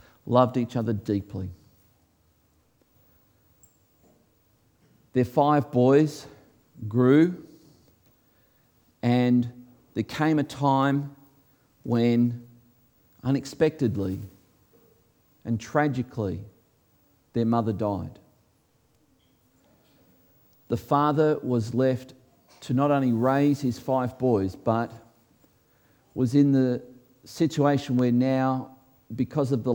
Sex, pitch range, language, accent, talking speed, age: male, 115-135 Hz, English, Australian, 85 wpm, 50-69